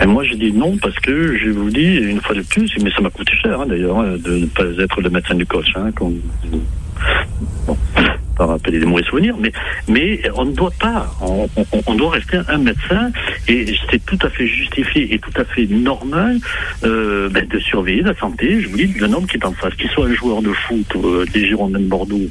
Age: 60-79